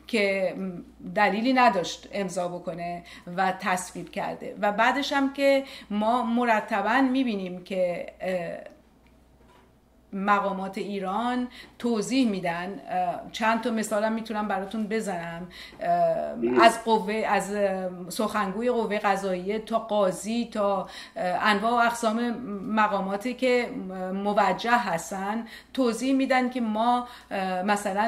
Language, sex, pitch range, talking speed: Persian, female, 195-235 Hz, 100 wpm